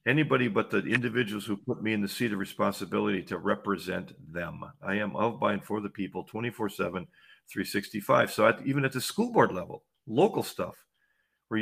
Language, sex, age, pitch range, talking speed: English, male, 50-69, 105-130 Hz, 185 wpm